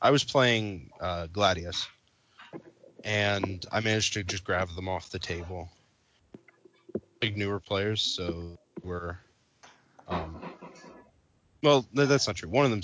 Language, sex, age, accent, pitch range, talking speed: English, male, 20-39, American, 90-115 Hz, 130 wpm